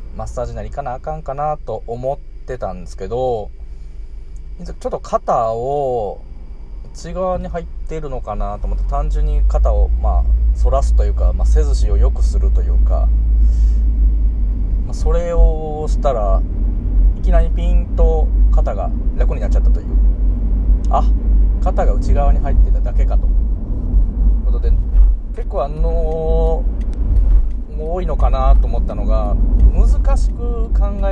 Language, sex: Japanese, male